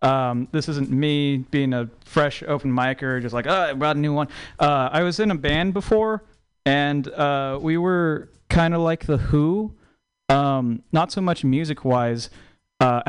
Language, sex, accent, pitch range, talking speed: English, male, American, 130-185 Hz, 180 wpm